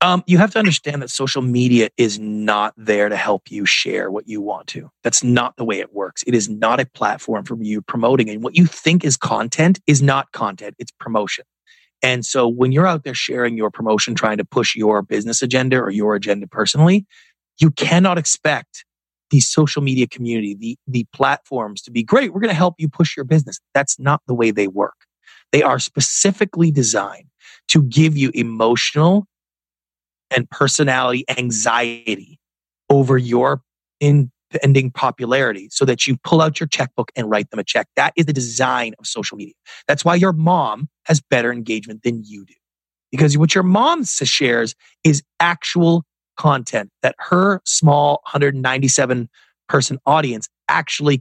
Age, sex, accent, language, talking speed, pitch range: 30-49, male, American, English, 175 wpm, 115-155 Hz